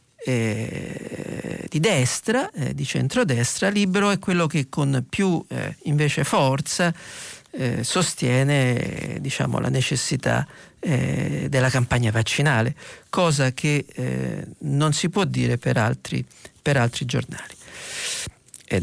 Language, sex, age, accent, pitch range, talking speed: Italian, male, 50-69, native, 130-175 Hz, 120 wpm